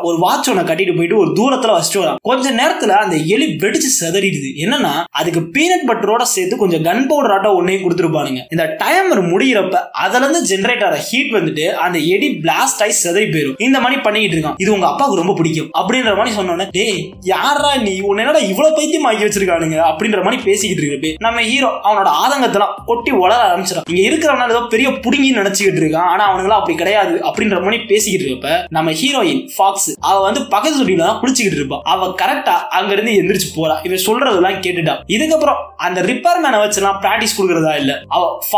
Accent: native